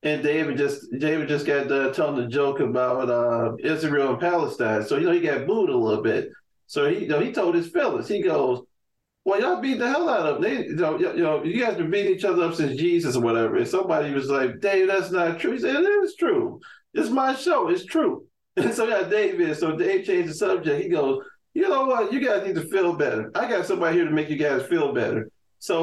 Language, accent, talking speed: English, American, 255 wpm